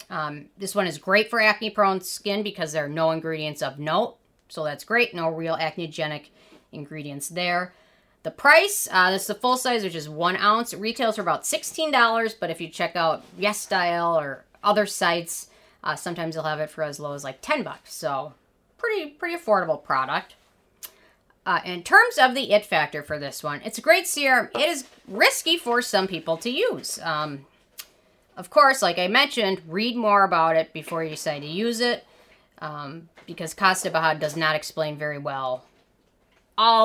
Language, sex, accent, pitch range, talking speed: English, female, American, 155-210 Hz, 185 wpm